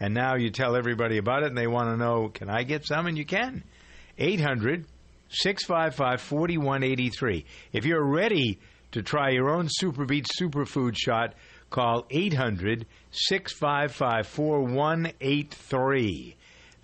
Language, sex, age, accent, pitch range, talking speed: English, male, 50-69, American, 105-135 Hz, 120 wpm